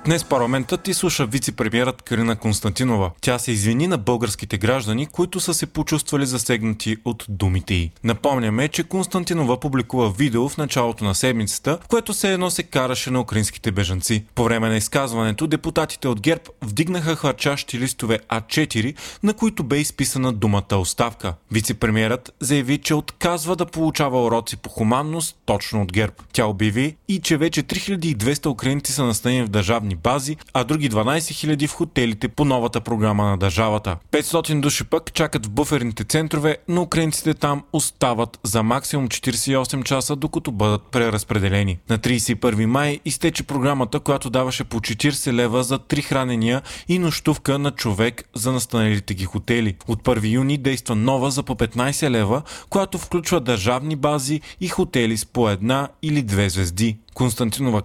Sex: male